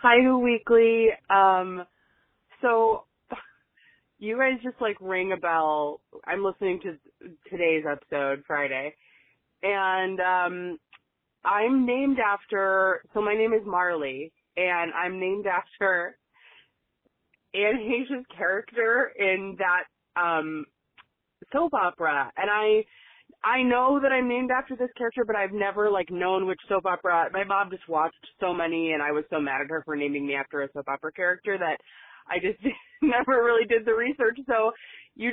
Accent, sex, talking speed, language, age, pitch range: American, female, 150 wpm, English, 20-39, 180-245 Hz